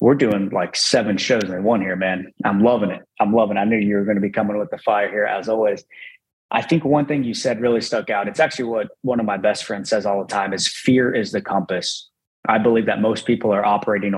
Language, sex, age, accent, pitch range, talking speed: English, male, 20-39, American, 100-110 Hz, 260 wpm